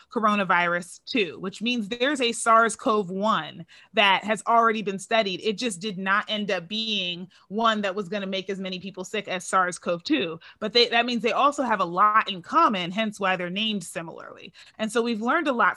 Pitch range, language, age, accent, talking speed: 195-235 Hz, English, 30-49, American, 200 wpm